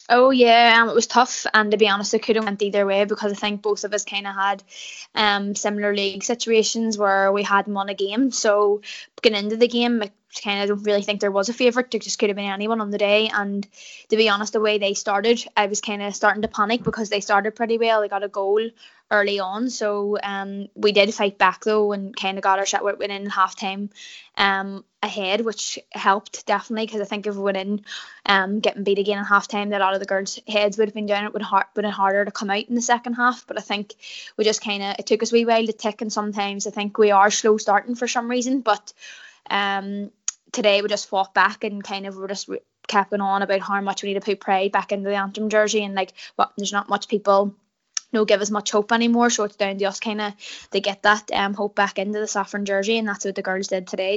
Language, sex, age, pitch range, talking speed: English, female, 10-29, 200-220 Hz, 260 wpm